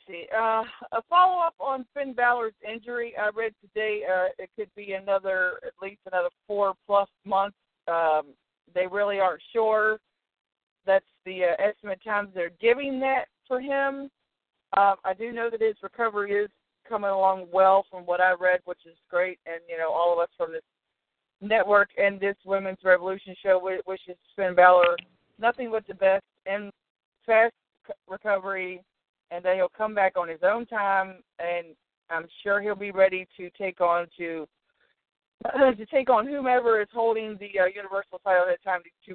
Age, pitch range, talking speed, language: 50-69, 185-220 Hz, 170 wpm, English